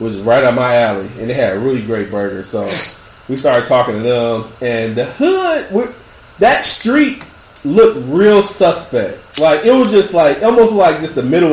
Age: 30-49